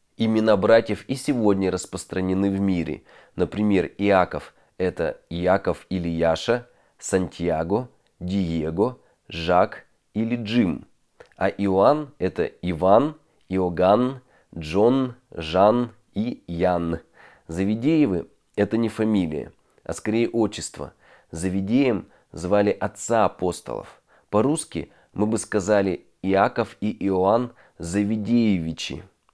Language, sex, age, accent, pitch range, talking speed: Russian, male, 30-49, native, 95-110 Hz, 95 wpm